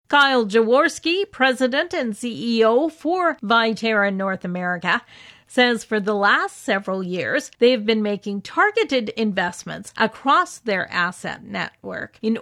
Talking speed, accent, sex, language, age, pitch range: 120 wpm, American, female, English, 50-69, 205-260 Hz